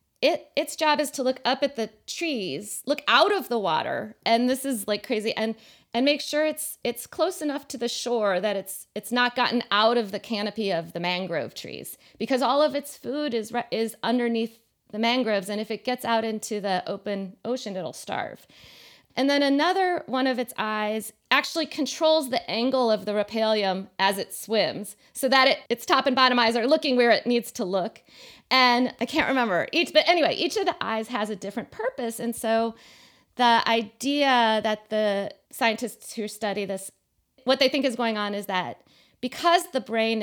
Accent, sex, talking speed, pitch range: American, female, 195 wpm, 210-270 Hz